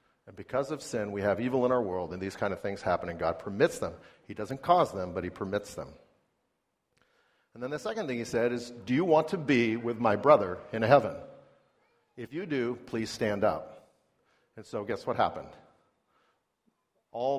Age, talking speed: 50-69, 200 wpm